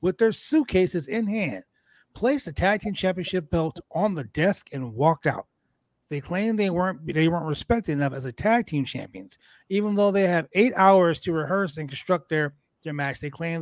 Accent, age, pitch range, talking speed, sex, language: American, 30-49, 145-200 Hz, 200 wpm, male, English